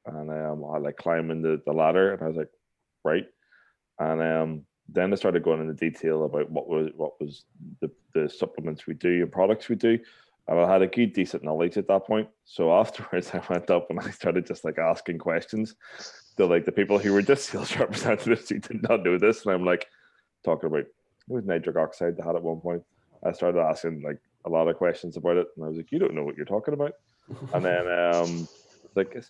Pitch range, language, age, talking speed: 80-100 Hz, English, 20-39, 220 wpm